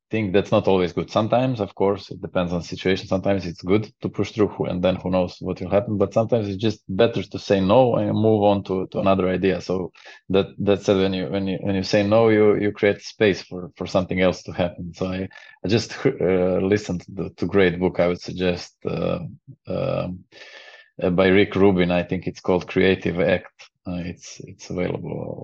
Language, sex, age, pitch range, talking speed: English, male, 20-39, 90-100 Hz, 220 wpm